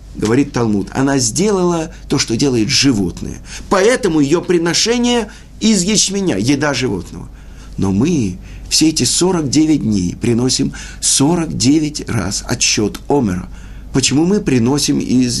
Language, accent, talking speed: Russian, native, 115 wpm